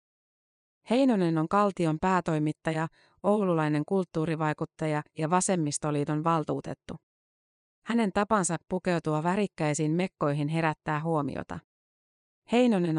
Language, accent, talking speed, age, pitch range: Finnish, native, 80 wpm, 30-49, 155-190 Hz